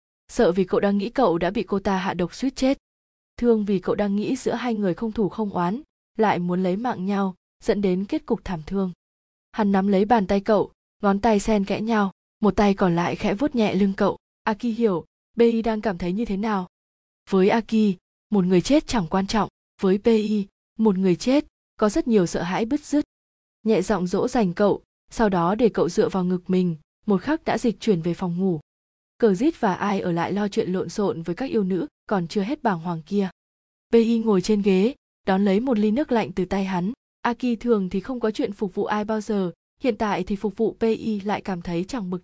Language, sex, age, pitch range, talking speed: Vietnamese, female, 20-39, 190-225 Hz, 230 wpm